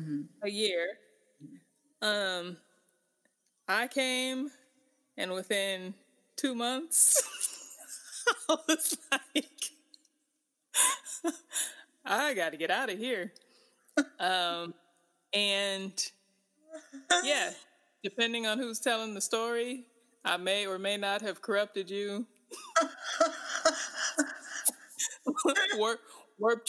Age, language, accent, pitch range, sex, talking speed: 20-39, English, American, 200-290 Hz, female, 80 wpm